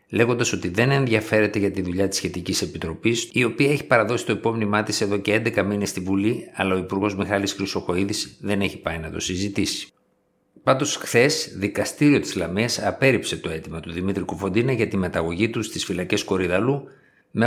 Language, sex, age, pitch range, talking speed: Greek, male, 50-69, 95-115 Hz, 180 wpm